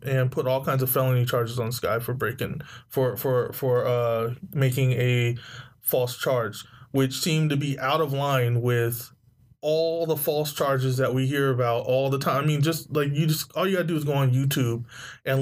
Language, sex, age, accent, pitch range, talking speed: English, male, 20-39, American, 125-140 Hz, 205 wpm